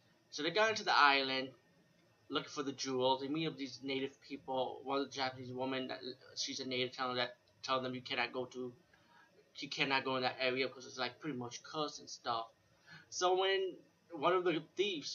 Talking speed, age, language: 210 wpm, 20-39, English